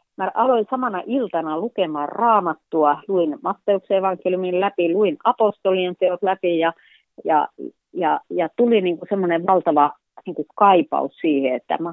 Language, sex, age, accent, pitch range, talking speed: Finnish, female, 40-59, native, 160-210 Hz, 135 wpm